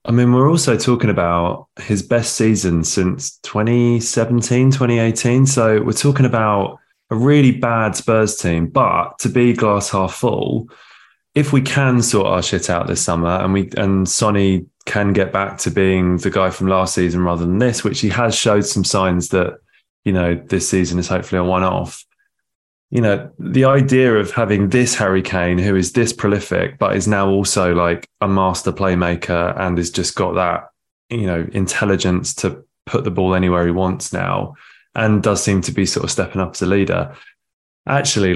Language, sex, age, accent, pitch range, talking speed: English, male, 20-39, British, 90-115 Hz, 185 wpm